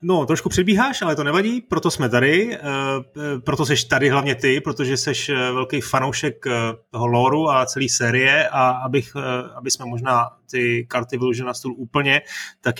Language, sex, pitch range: Czech, male, 120-145 Hz